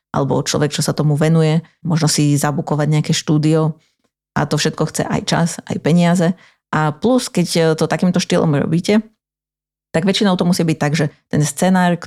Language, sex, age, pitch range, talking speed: Slovak, female, 30-49, 150-175 Hz, 180 wpm